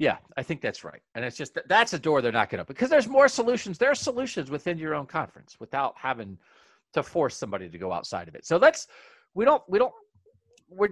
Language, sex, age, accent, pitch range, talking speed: English, male, 40-59, American, 135-225 Hz, 240 wpm